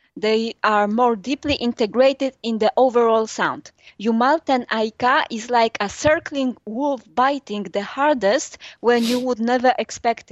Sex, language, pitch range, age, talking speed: female, English, 215-265 Hz, 20-39, 140 wpm